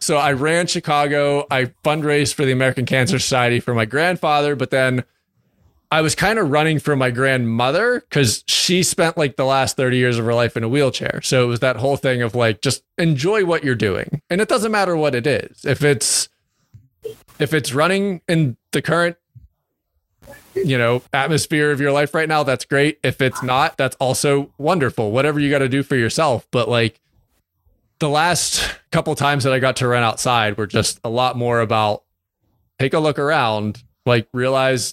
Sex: male